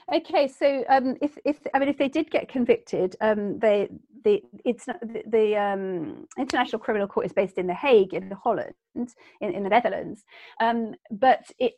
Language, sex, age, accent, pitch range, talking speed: English, female, 40-59, British, 200-250 Hz, 190 wpm